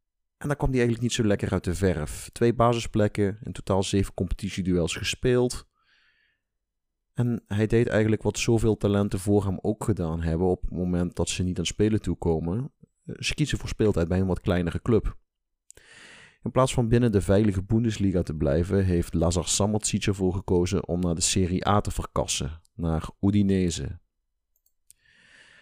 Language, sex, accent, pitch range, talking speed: Dutch, male, Dutch, 85-105 Hz, 170 wpm